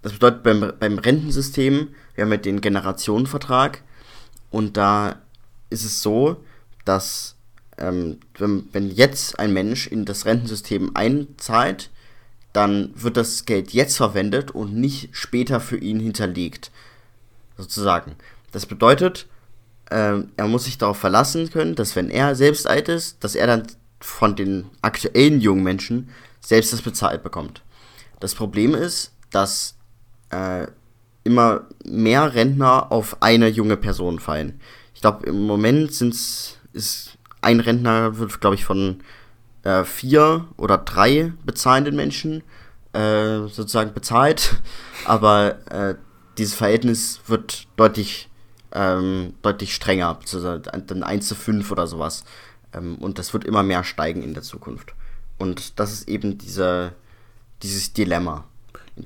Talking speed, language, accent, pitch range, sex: 135 wpm, German, German, 100-120 Hz, male